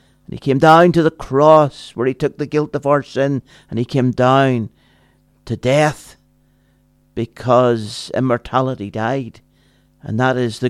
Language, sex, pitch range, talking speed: English, male, 115-140 Hz, 150 wpm